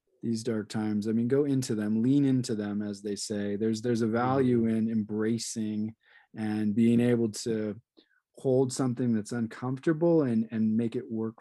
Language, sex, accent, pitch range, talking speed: English, male, American, 110-125 Hz, 175 wpm